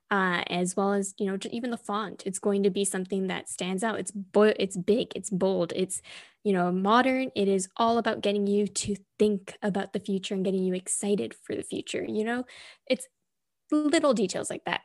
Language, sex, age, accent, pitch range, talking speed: English, female, 10-29, American, 195-230 Hz, 205 wpm